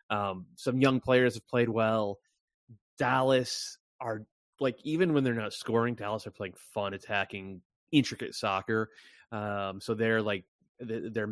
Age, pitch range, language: 20-39, 105-125 Hz, English